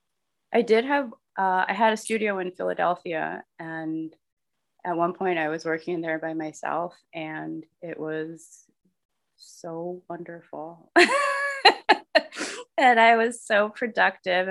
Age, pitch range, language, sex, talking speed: 20-39, 160-230 Hz, English, female, 125 wpm